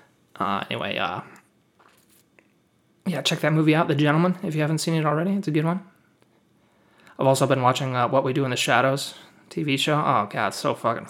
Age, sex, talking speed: 20-39, male, 205 wpm